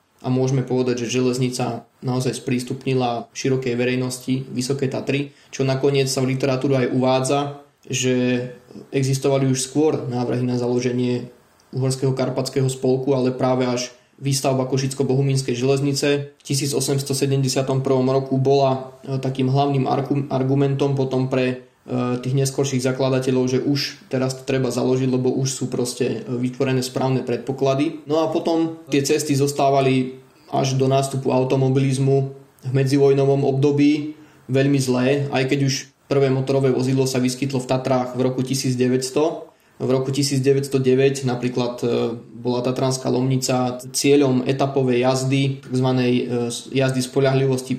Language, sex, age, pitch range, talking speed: Slovak, male, 20-39, 130-140 Hz, 125 wpm